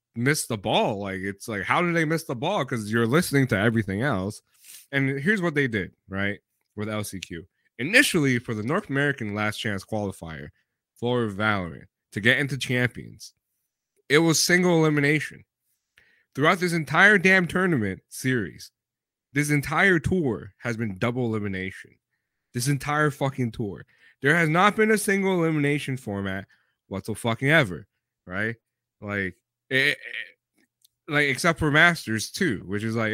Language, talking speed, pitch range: English, 150 wpm, 105-160 Hz